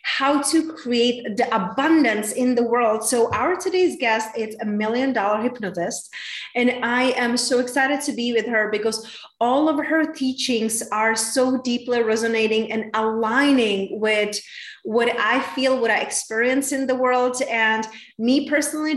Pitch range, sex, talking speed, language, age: 215-265 Hz, female, 155 wpm, English, 30-49